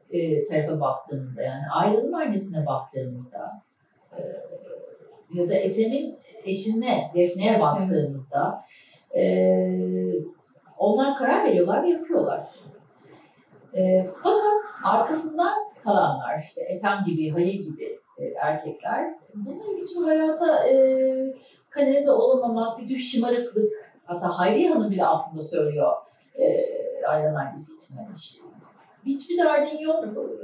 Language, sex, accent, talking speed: Turkish, female, native, 110 wpm